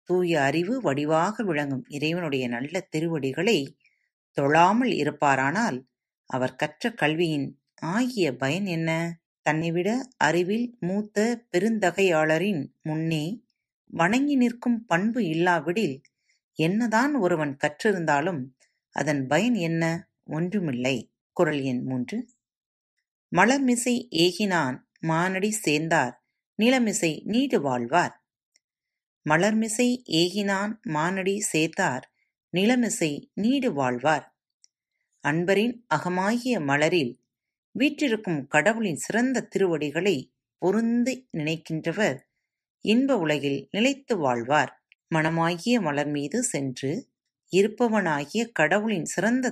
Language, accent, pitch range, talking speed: Tamil, native, 150-220 Hz, 80 wpm